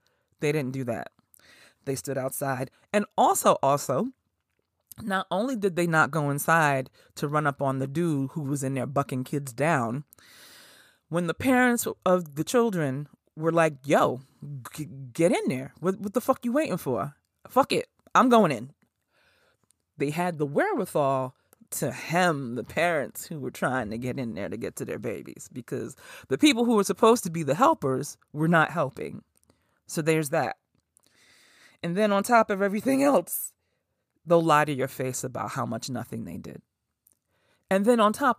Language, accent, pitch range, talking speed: English, American, 140-220 Hz, 175 wpm